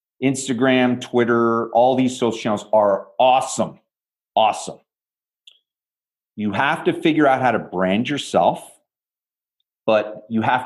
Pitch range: 110-175 Hz